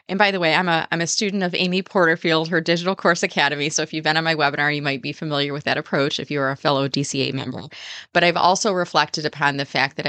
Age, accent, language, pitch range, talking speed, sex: 30-49, American, English, 145-180 Hz, 260 wpm, female